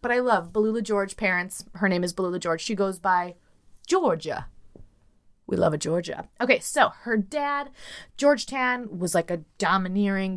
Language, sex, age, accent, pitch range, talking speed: English, female, 20-39, American, 185-265 Hz, 170 wpm